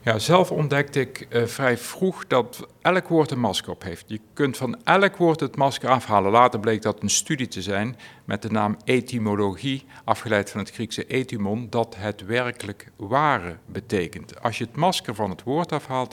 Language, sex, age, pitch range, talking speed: Dutch, male, 50-69, 105-135 Hz, 190 wpm